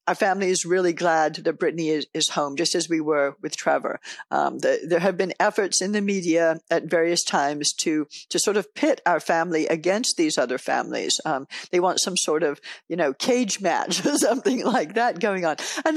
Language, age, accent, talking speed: English, 60-79, American, 205 wpm